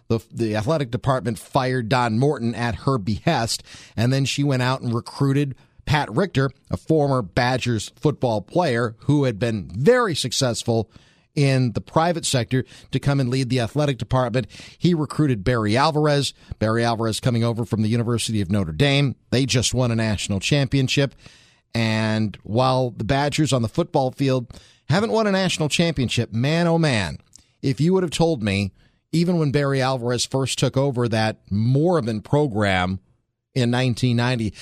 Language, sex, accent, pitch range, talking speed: English, male, American, 115-145 Hz, 165 wpm